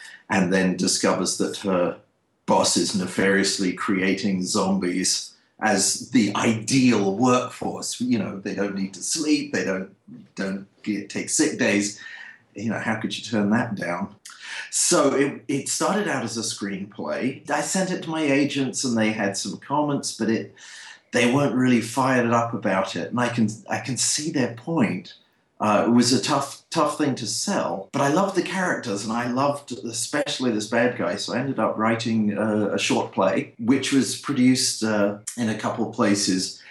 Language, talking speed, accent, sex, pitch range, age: English, 180 wpm, British, male, 100-130 Hz, 40-59